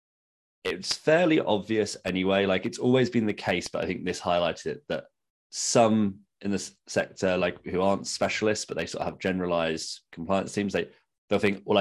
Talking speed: 185 wpm